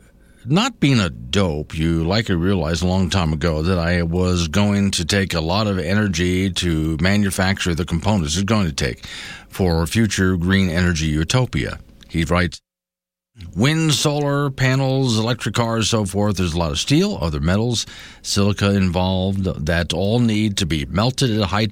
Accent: American